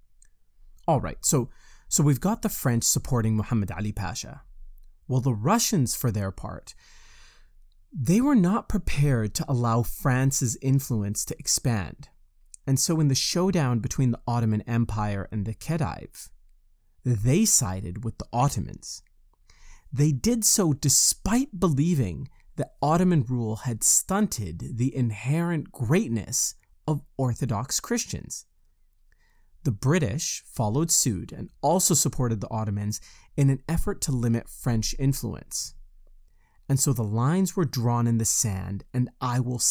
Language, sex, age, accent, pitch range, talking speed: English, male, 30-49, American, 105-140 Hz, 135 wpm